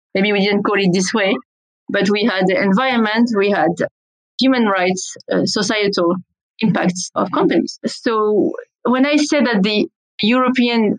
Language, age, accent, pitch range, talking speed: English, 30-49, French, 205-255 Hz, 155 wpm